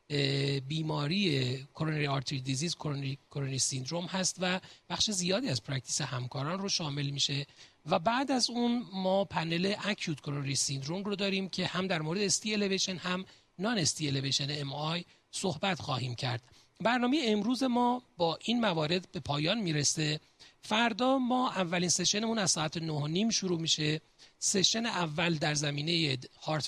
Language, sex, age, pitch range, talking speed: Persian, male, 40-59, 150-195 Hz, 150 wpm